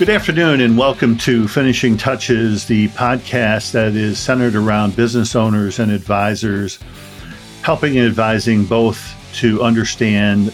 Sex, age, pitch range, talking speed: male, 50-69, 105-125 Hz, 130 wpm